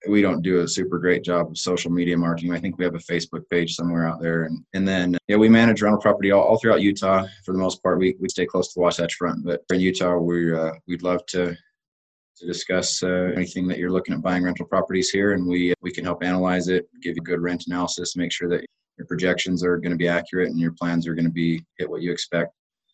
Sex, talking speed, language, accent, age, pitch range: male, 260 wpm, English, American, 20-39, 85-90 Hz